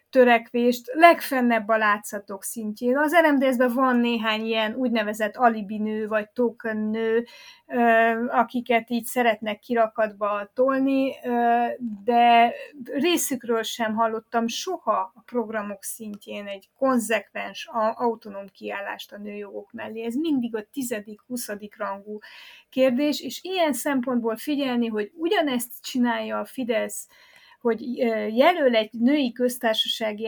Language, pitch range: Hungarian, 215-255 Hz